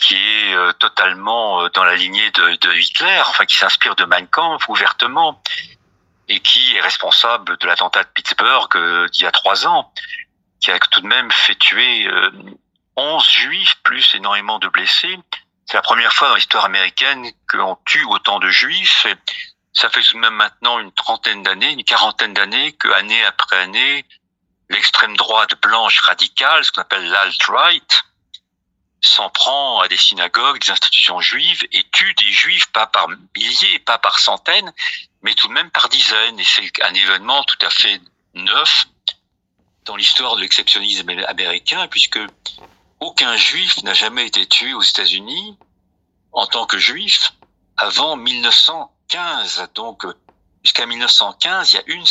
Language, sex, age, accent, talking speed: French, male, 50-69, French, 160 wpm